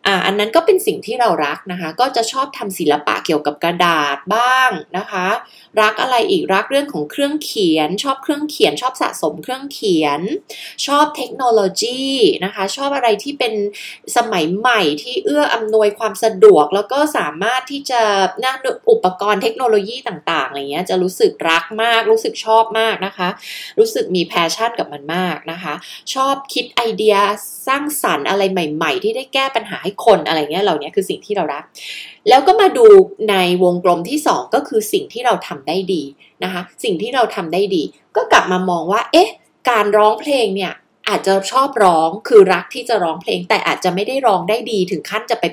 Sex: female